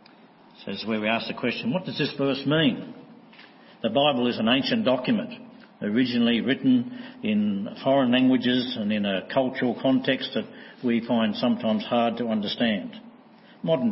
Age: 60-79